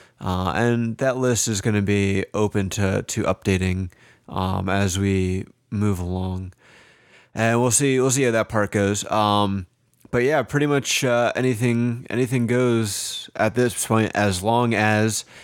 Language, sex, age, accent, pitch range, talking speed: English, male, 20-39, American, 100-115 Hz, 160 wpm